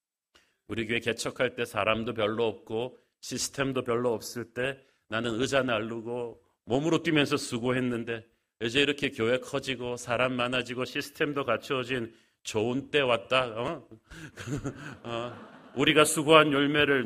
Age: 40-59